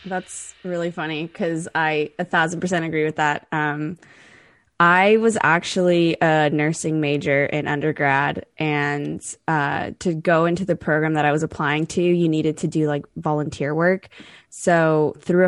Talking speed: 160 wpm